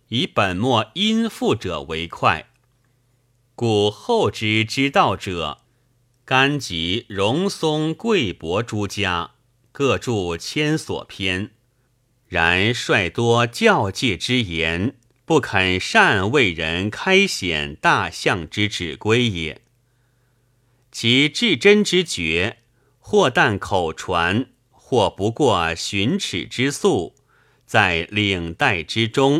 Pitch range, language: 100-130 Hz, Chinese